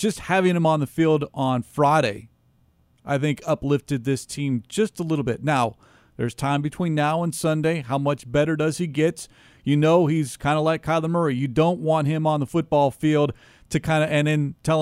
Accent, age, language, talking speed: American, 40-59, English, 210 wpm